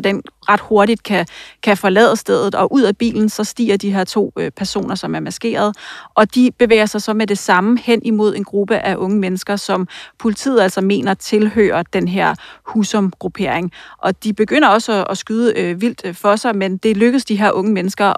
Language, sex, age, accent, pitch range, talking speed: Danish, female, 30-49, native, 190-215 Hz, 200 wpm